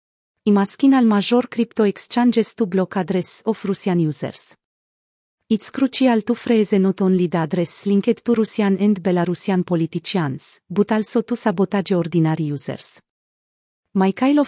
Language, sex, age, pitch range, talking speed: Romanian, female, 30-49, 175-220 Hz, 130 wpm